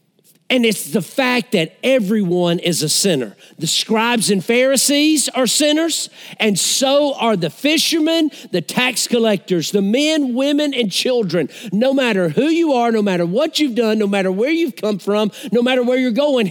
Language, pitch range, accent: English, 180-245 Hz, American